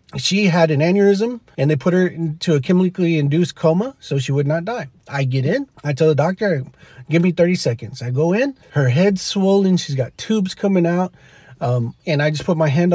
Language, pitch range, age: English, 140-195 Hz, 30-49